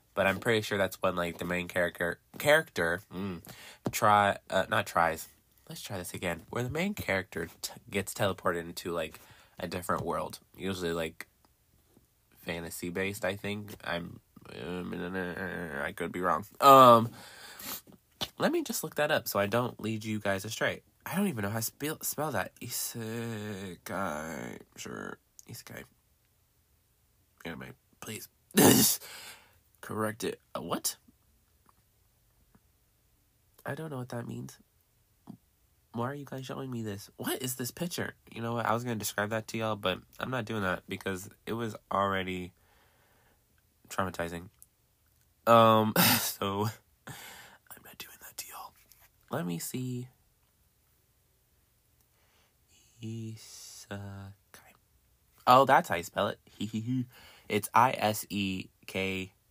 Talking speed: 135 wpm